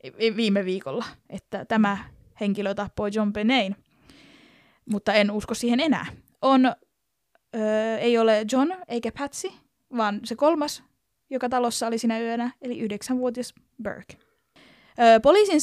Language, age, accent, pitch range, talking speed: Finnish, 20-39, native, 215-265 Hz, 125 wpm